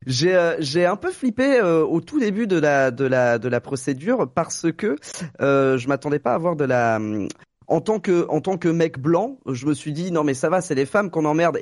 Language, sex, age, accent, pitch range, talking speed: French, male, 30-49, French, 120-160 Hz, 250 wpm